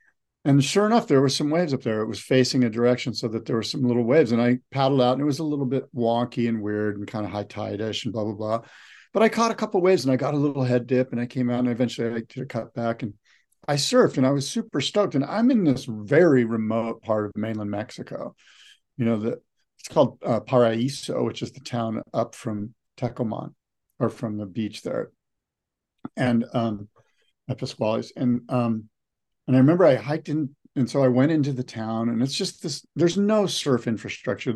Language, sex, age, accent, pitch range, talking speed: English, male, 50-69, American, 115-135 Hz, 230 wpm